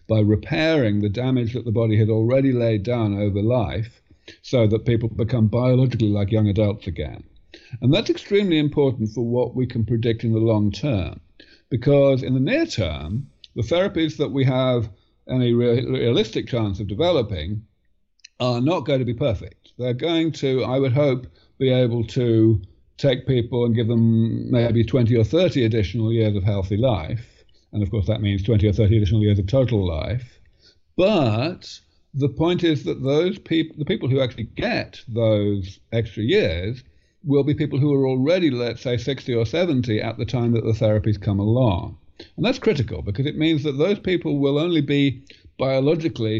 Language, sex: English, male